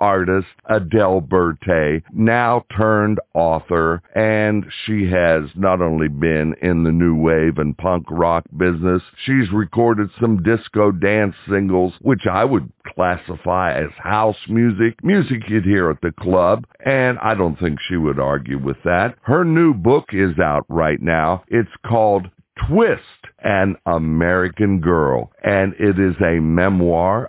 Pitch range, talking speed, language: 85-110 Hz, 145 wpm, English